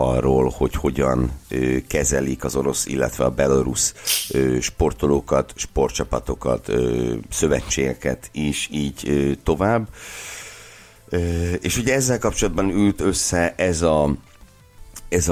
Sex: male